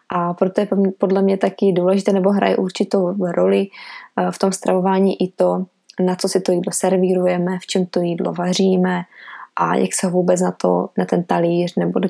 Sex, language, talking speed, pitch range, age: female, Czech, 195 wpm, 180-215 Hz, 20-39